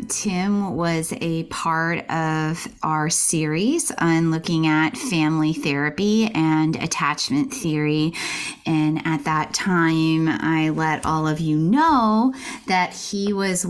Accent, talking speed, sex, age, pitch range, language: American, 125 wpm, female, 30-49, 155-210 Hz, English